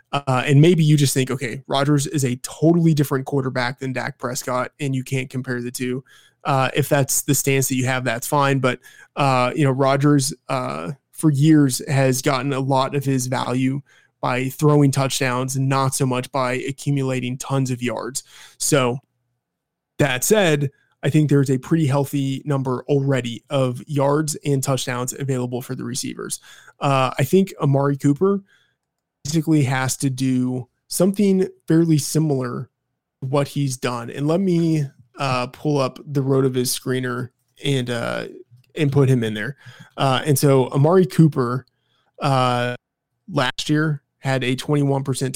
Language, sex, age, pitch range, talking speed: English, male, 20-39, 125-145 Hz, 160 wpm